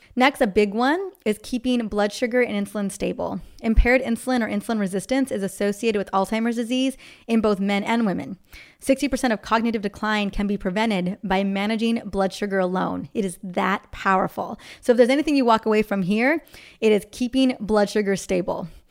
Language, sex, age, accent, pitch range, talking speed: English, female, 20-39, American, 205-255 Hz, 180 wpm